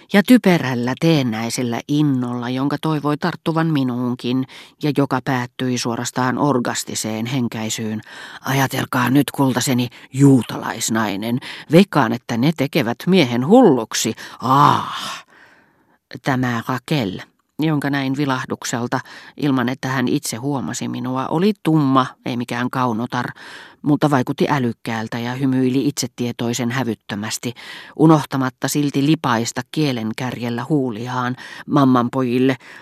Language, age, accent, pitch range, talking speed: Finnish, 40-59, native, 120-145 Hz, 100 wpm